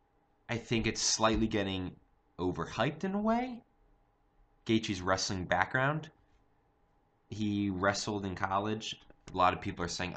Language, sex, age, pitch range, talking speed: English, male, 20-39, 85-105 Hz, 130 wpm